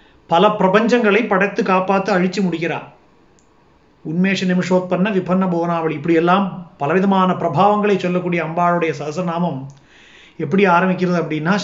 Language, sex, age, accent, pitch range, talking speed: Tamil, male, 30-49, native, 165-195 Hz, 105 wpm